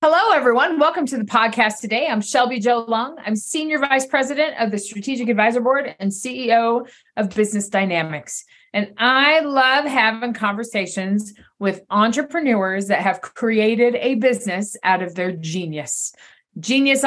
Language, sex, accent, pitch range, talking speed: English, female, American, 195-255 Hz, 150 wpm